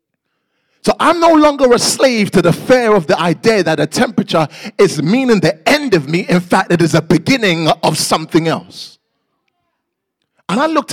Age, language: 30-49, English